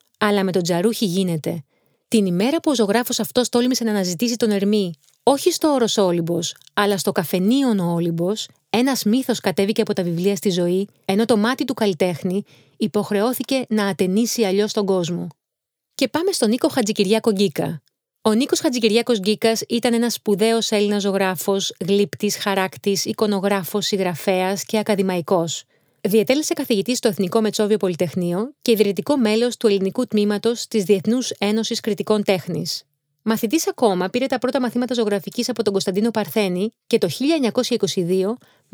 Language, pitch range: Greek, 195-235 Hz